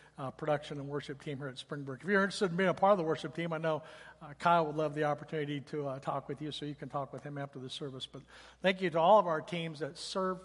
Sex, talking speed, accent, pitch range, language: male, 295 wpm, American, 145-170 Hz, English